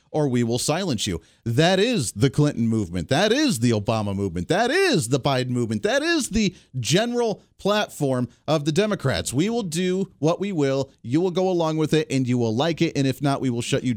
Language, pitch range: English, 125-180 Hz